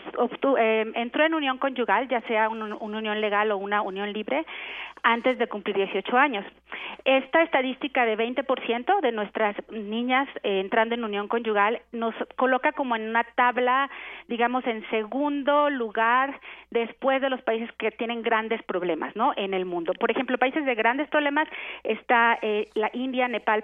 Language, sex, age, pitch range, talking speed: Spanish, female, 30-49, 210-255 Hz, 160 wpm